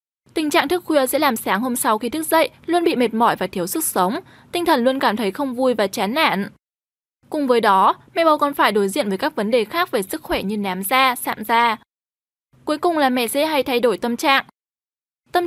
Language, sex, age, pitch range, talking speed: Vietnamese, female, 10-29, 225-305 Hz, 245 wpm